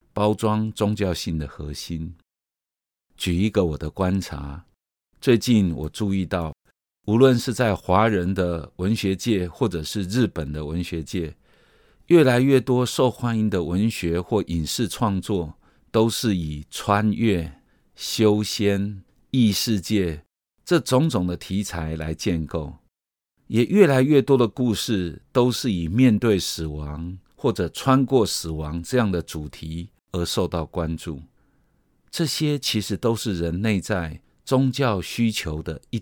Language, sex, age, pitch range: Chinese, male, 50-69, 80-110 Hz